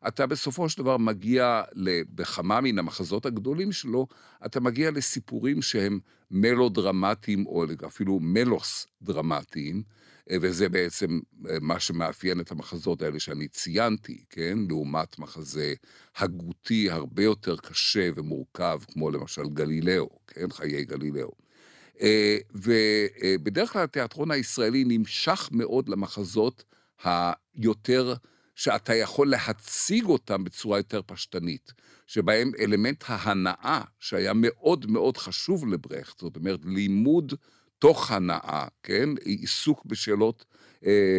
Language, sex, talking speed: Hebrew, male, 110 wpm